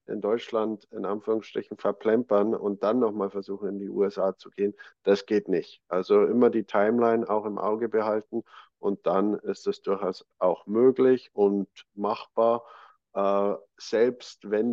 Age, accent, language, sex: 50-69, German, German, male